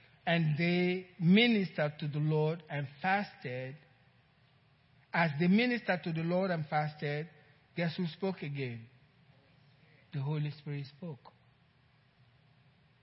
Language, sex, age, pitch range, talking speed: English, male, 50-69, 135-225 Hz, 110 wpm